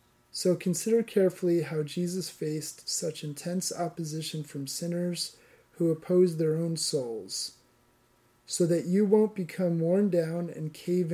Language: English